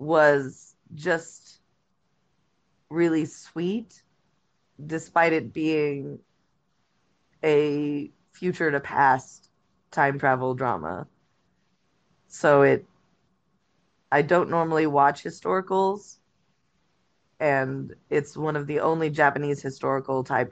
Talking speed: 90 wpm